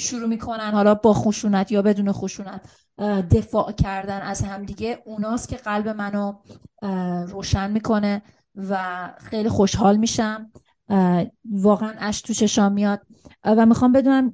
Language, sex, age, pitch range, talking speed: Persian, female, 30-49, 195-225 Hz, 120 wpm